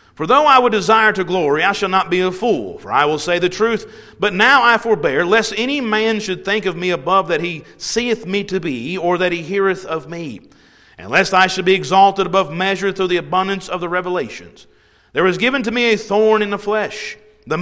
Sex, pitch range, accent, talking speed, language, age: male, 170-215 Hz, American, 230 wpm, English, 40-59